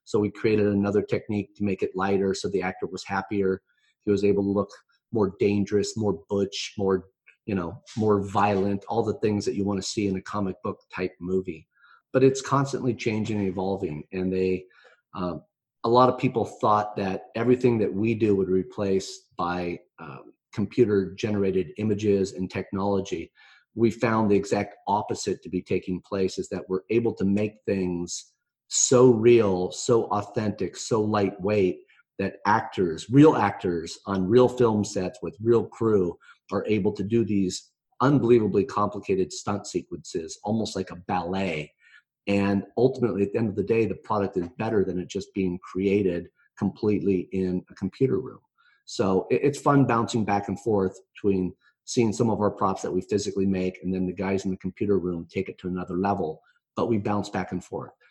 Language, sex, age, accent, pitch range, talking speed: English, male, 30-49, American, 95-110 Hz, 180 wpm